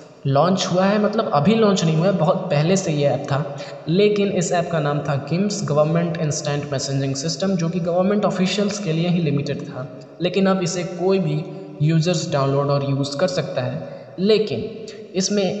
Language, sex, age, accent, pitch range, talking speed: Hindi, male, 20-39, native, 140-180 Hz, 190 wpm